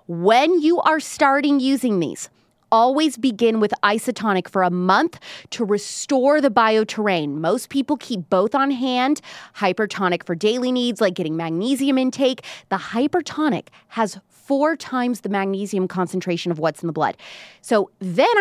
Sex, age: female, 20-39